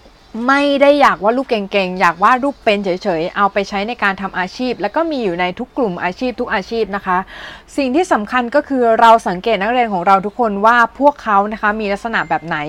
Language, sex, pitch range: Thai, female, 195-245 Hz